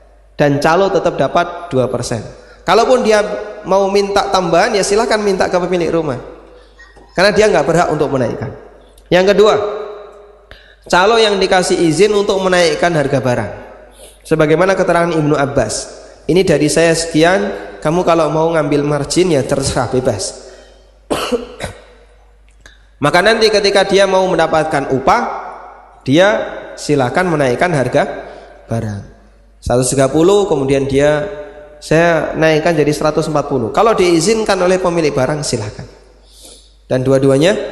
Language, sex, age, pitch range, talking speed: Indonesian, male, 20-39, 135-180 Hz, 120 wpm